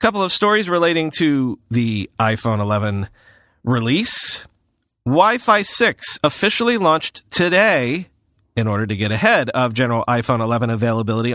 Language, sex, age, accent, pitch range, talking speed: English, male, 40-59, American, 120-160 Hz, 130 wpm